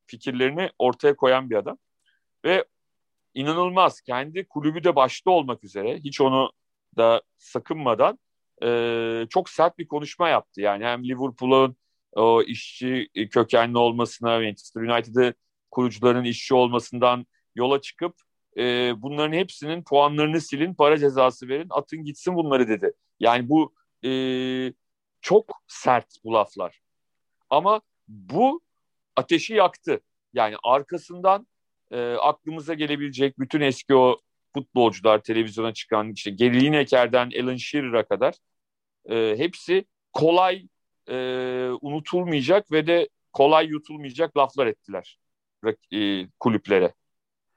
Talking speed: 105 wpm